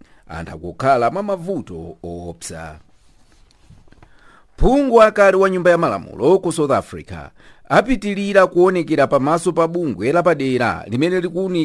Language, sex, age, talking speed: English, male, 50-69, 105 wpm